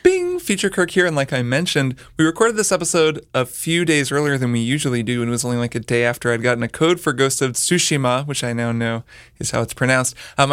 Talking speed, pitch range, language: 255 wpm, 120-155 Hz, English